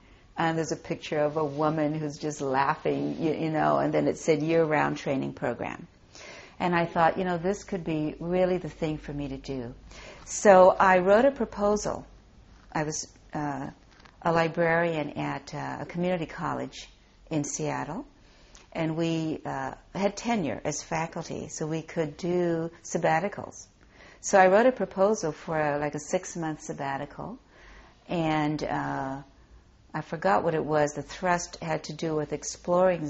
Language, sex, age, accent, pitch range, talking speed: English, female, 60-79, American, 150-190 Hz, 160 wpm